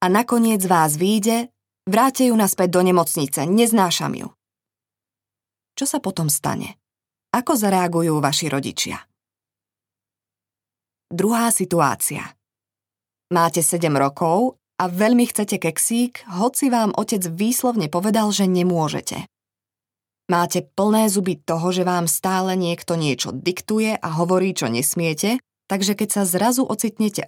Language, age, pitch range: Slovak, 20-39, 140-210 Hz